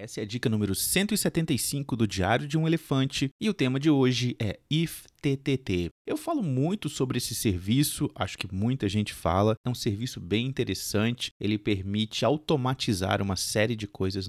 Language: Portuguese